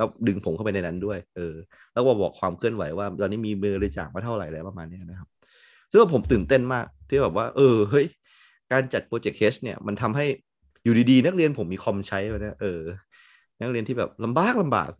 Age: 20-39